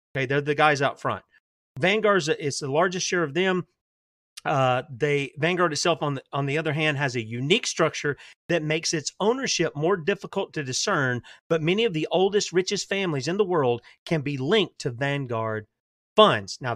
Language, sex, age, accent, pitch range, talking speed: English, male, 40-59, American, 145-185 Hz, 185 wpm